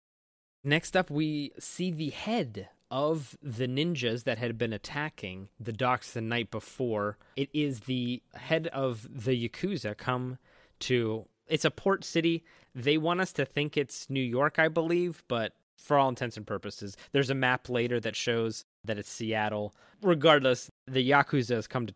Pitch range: 110-140 Hz